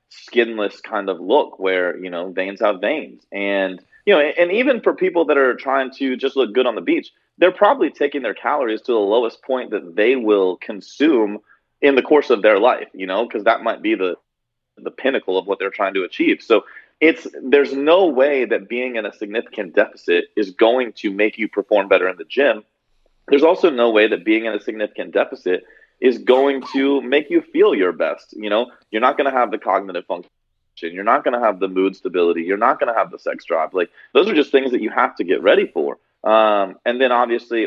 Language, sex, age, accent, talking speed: English, male, 30-49, American, 225 wpm